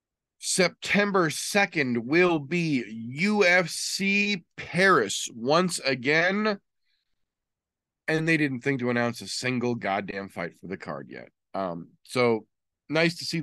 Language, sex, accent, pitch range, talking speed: English, male, American, 105-140 Hz, 120 wpm